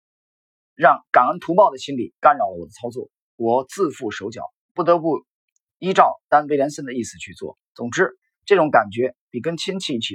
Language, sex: Chinese, male